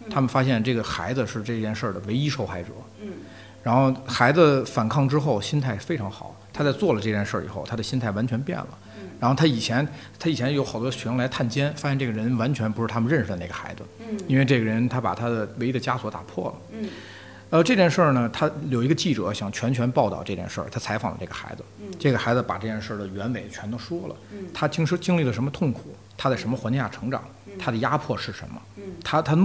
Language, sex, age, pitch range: Chinese, male, 50-69, 105-135 Hz